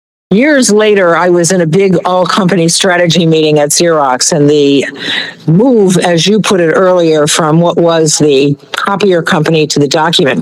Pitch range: 165-220 Hz